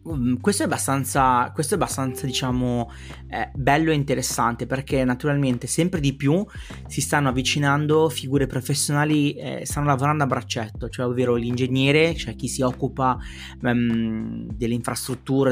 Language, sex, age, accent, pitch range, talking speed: Italian, male, 20-39, native, 120-140 Hz, 130 wpm